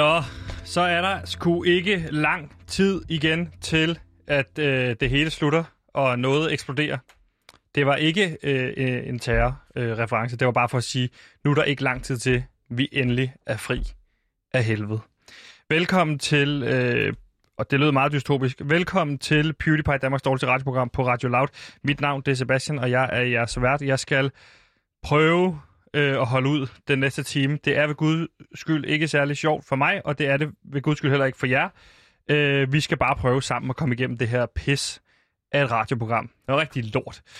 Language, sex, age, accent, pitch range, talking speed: Danish, male, 30-49, native, 125-155 Hz, 190 wpm